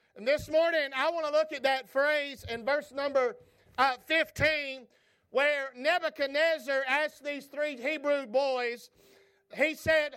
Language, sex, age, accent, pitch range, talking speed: English, male, 50-69, American, 275-330 Hz, 140 wpm